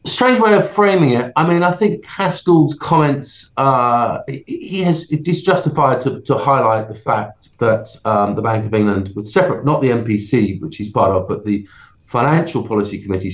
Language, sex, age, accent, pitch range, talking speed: English, male, 40-59, British, 105-140 Hz, 185 wpm